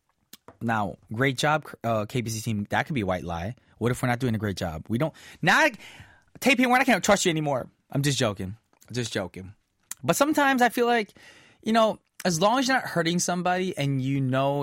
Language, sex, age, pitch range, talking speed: English, male, 20-39, 120-180 Hz, 230 wpm